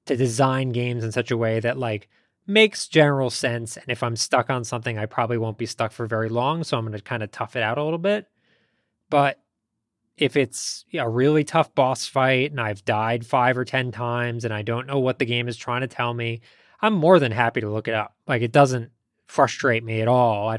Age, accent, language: 20-39, American, English